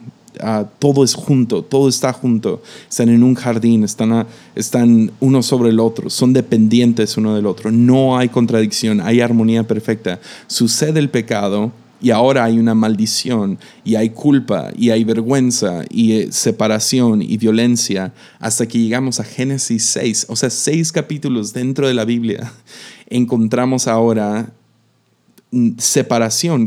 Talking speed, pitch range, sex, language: 145 wpm, 110-130 Hz, male, Spanish